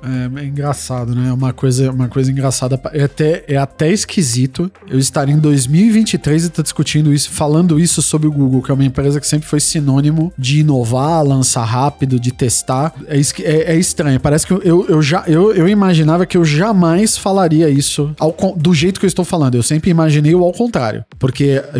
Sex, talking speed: male, 205 wpm